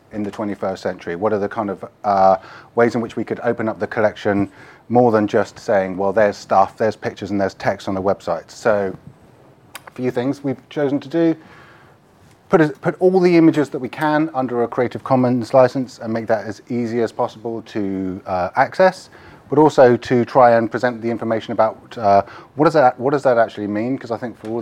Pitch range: 110-135 Hz